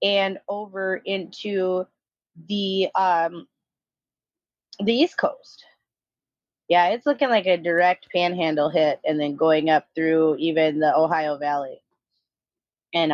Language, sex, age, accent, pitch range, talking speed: English, female, 30-49, American, 165-210 Hz, 120 wpm